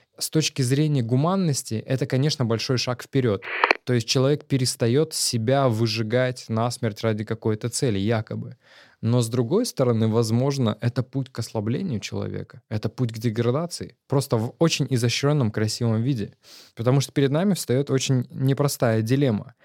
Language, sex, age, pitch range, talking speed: Russian, male, 20-39, 110-135 Hz, 145 wpm